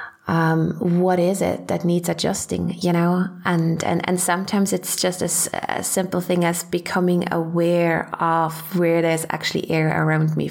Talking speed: 170 wpm